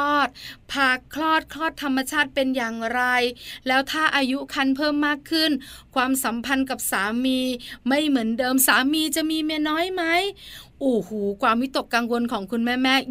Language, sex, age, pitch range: Thai, female, 20-39, 225-285 Hz